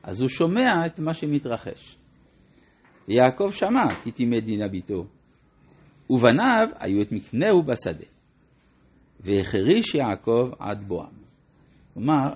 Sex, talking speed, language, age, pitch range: male, 105 wpm, Hebrew, 60-79, 95-155 Hz